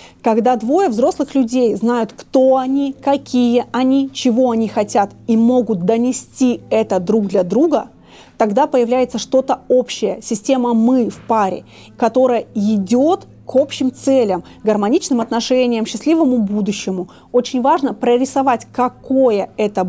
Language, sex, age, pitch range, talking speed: Russian, female, 30-49, 220-265 Hz, 125 wpm